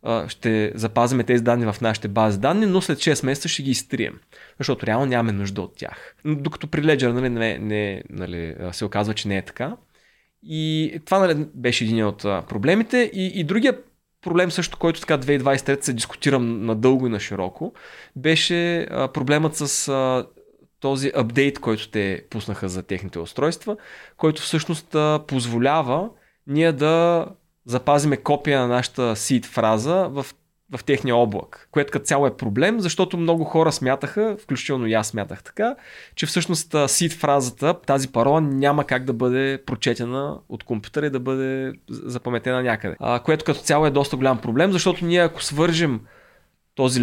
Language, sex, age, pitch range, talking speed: Bulgarian, male, 20-39, 115-160 Hz, 160 wpm